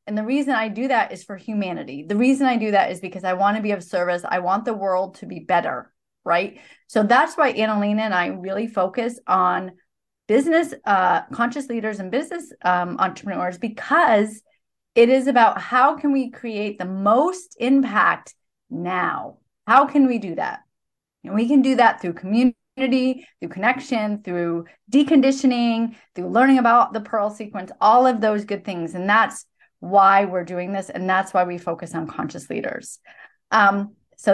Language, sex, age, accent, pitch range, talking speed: English, female, 30-49, American, 190-255 Hz, 180 wpm